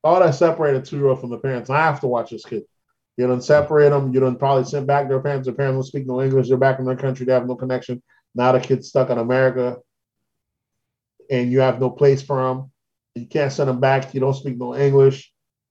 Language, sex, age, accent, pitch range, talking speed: English, male, 30-49, American, 125-145 Hz, 240 wpm